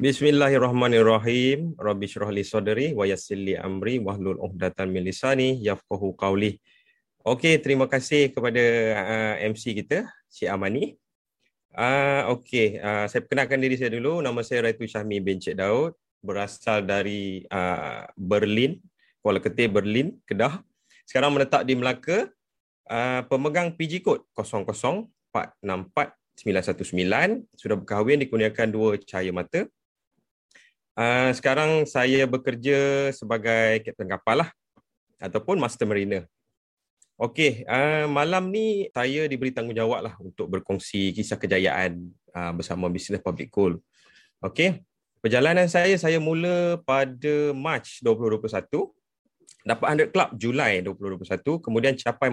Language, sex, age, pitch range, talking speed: Malay, male, 30-49, 100-140 Hz, 115 wpm